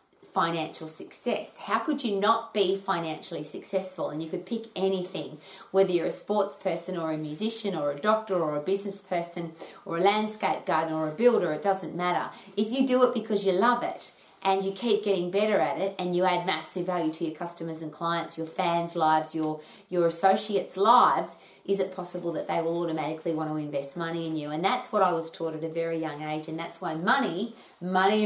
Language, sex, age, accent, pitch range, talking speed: English, female, 30-49, Australian, 165-205 Hz, 210 wpm